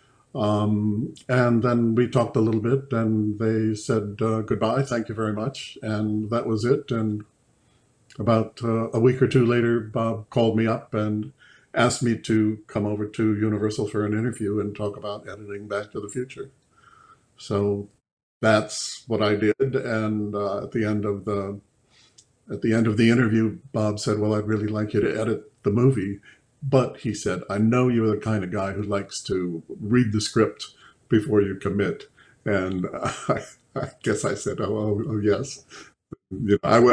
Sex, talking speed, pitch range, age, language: male, 180 wpm, 105-115 Hz, 60-79, English